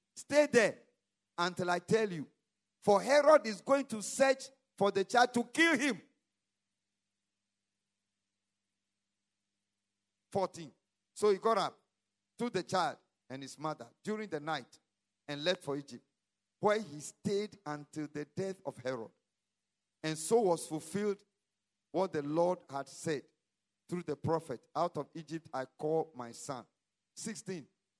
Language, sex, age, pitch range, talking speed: English, male, 50-69, 130-200 Hz, 135 wpm